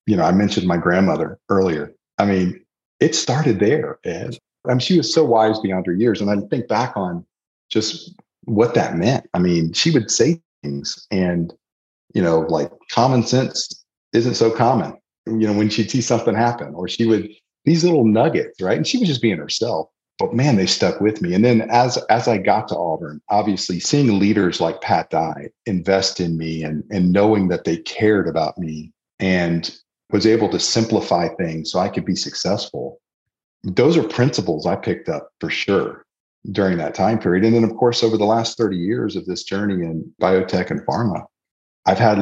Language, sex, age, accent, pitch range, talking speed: English, male, 40-59, American, 90-115 Hz, 195 wpm